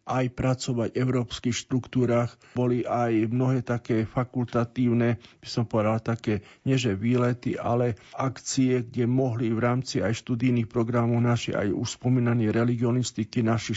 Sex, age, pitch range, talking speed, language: male, 50-69, 120-135 Hz, 130 wpm, Slovak